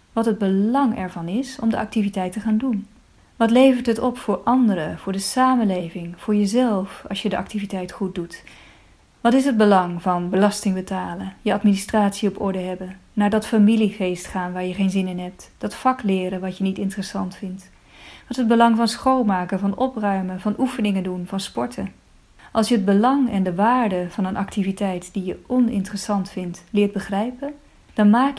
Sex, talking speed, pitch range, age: female, 190 wpm, 190-235 Hz, 30-49